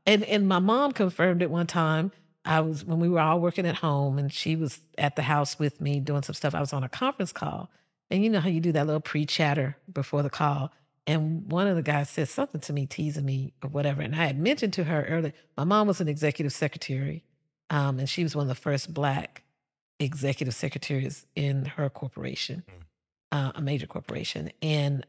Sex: female